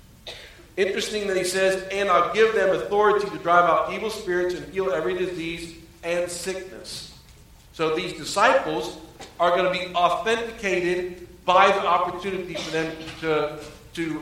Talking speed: 150 wpm